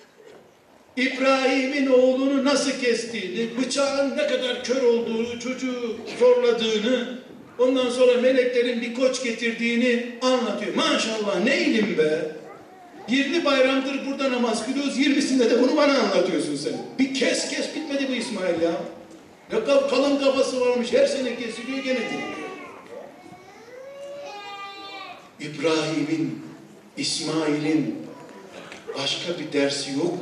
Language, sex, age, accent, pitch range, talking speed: Turkish, male, 60-79, native, 225-285 Hz, 105 wpm